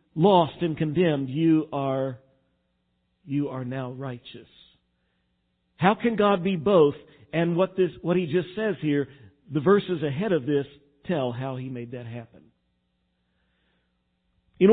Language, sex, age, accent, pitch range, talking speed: English, male, 50-69, American, 135-190 Hz, 140 wpm